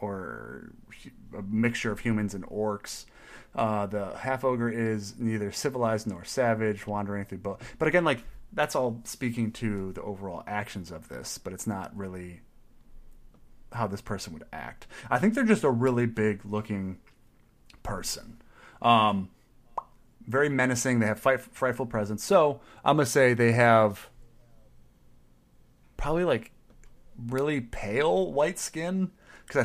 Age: 30-49